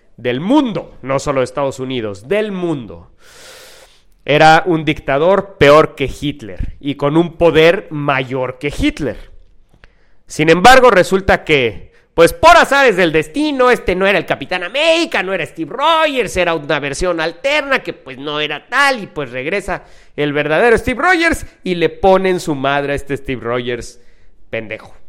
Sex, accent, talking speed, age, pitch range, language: male, Mexican, 160 wpm, 40-59, 130-190 Hz, English